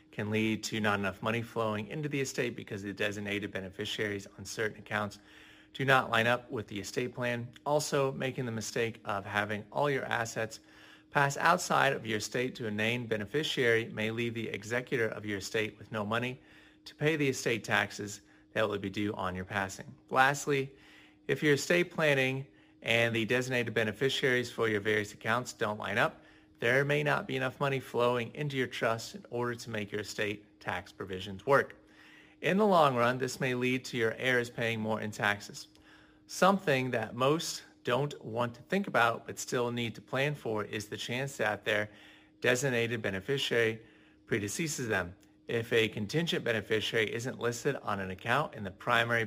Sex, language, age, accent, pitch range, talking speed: male, English, 30-49, American, 105-130 Hz, 180 wpm